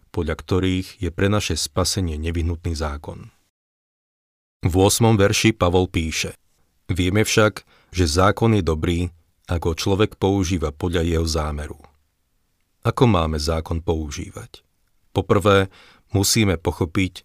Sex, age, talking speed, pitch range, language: male, 40-59, 110 wpm, 85-95 Hz, Slovak